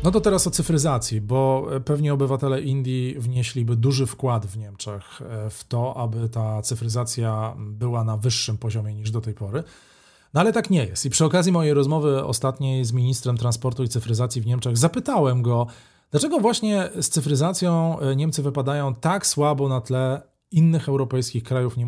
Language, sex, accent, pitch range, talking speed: Polish, male, native, 120-155 Hz, 165 wpm